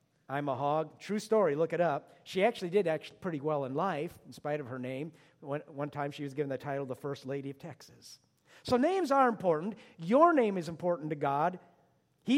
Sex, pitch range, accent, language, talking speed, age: male, 150-215 Hz, American, English, 220 wpm, 50-69